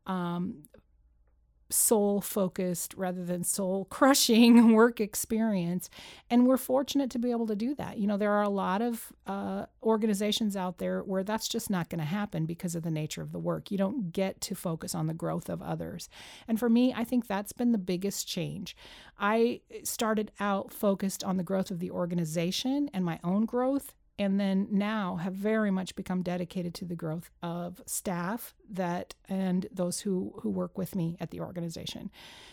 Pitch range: 180-215 Hz